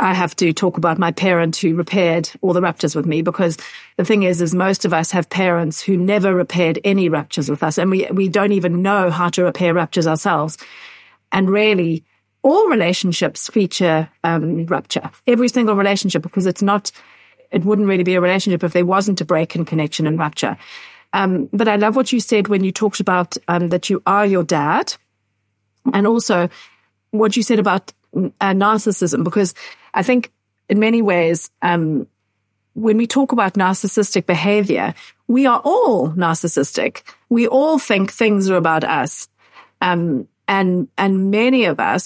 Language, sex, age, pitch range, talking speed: English, female, 40-59, 170-205 Hz, 180 wpm